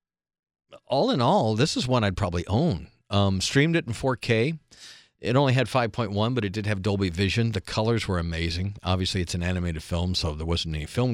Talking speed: 205 wpm